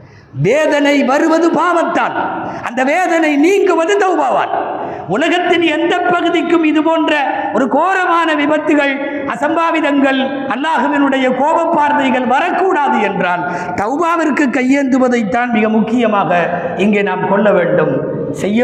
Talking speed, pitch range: 95 wpm, 170-275 Hz